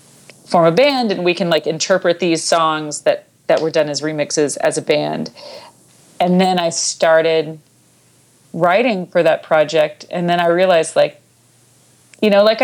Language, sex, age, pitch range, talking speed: English, female, 40-59, 150-180 Hz, 165 wpm